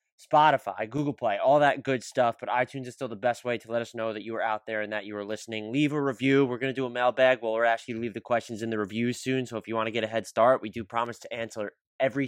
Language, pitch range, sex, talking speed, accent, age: English, 110-135 Hz, male, 320 wpm, American, 20-39